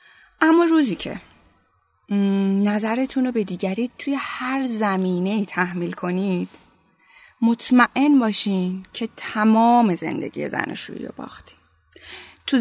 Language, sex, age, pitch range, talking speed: Persian, female, 20-39, 190-245 Hz, 95 wpm